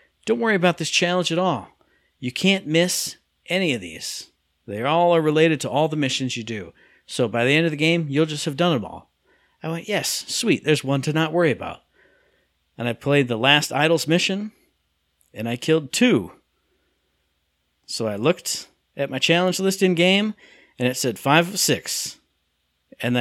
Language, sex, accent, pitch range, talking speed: English, male, American, 115-165 Hz, 185 wpm